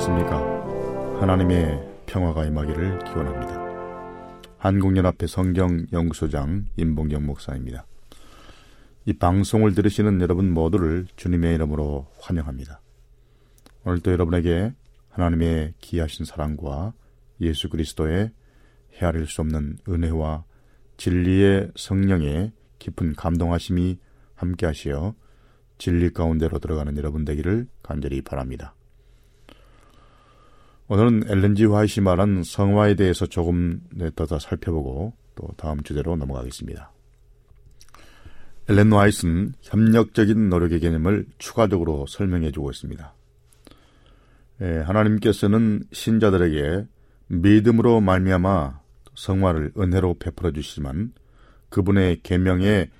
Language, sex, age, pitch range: Korean, male, 40-59, 80-105 Hz